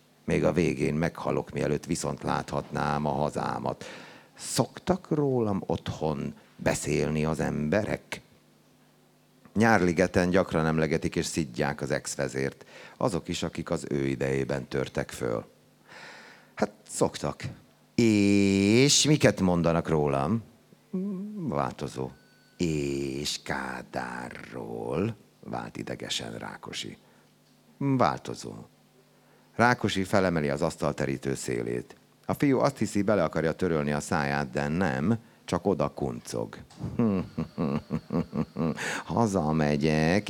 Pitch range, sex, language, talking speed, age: 75-105 Hz, male, Hungarian, 95 wpm, 60-79